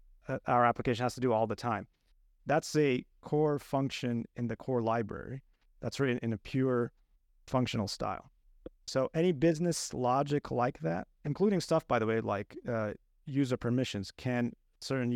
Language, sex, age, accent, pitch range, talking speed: English, male, 30-49, American, 115-135 Hz, 160 wpm